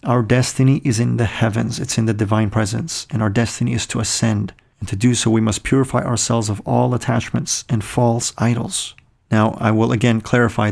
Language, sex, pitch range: English, male, 110-125 Hz